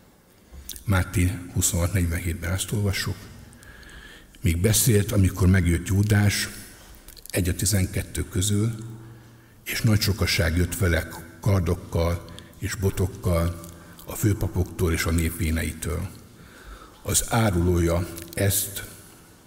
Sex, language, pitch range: male, Hungarian, 85-105 Hz